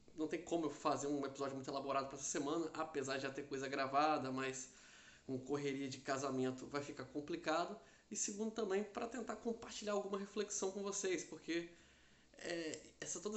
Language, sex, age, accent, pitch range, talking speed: Portuguese, male, 20-39, Brazilian, 135-175 Hz, 170 wpm